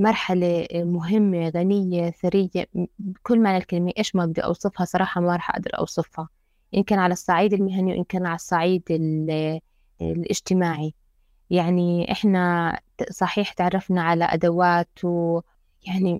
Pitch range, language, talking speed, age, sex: 170-195 Hz, Arabic, 125 wpm, 20-39, female